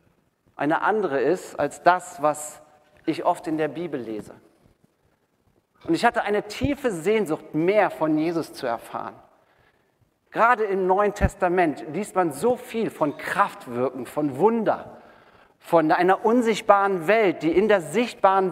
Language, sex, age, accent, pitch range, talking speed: German, male, 40-59, German, 155-210 Hz, 140 wpm